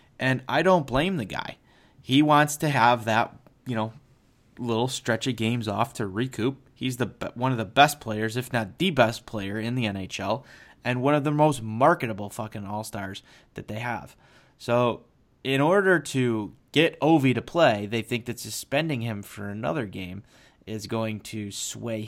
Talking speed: 180 wpm